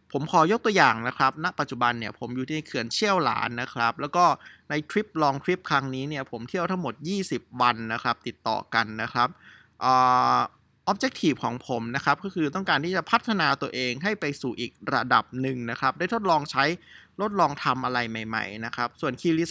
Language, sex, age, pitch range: Thai, male, 20-39, 120-160 Hz